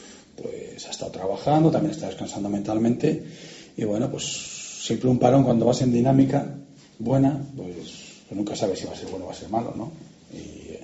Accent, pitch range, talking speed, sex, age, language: Spanish, 100-145 Hz, 190 wpm, male, 40-59, Spanish